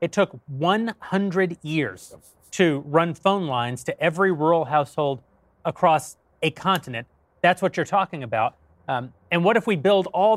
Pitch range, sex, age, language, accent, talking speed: 145-185 Hz, male, 30-49, English, American, 155 wpm